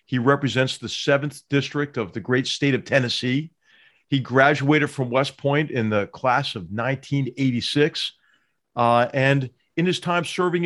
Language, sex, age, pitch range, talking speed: English, male, 40-59, 125-150 Hz, 150 wpm